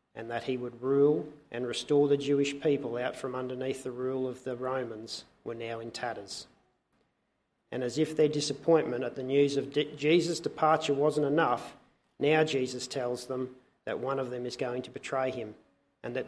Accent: Australian